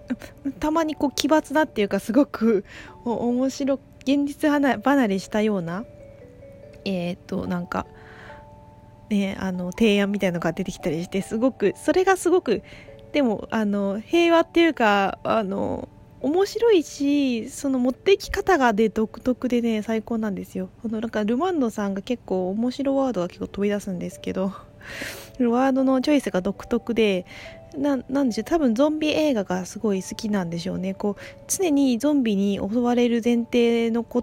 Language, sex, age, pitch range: Japanese, female, 20-39, 195-265 Hz